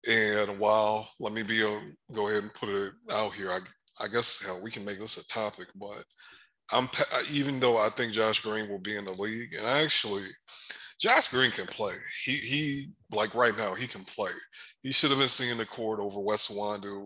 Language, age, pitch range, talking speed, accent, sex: English, 20-39, 100-115 Hz, 210 wpm, American, male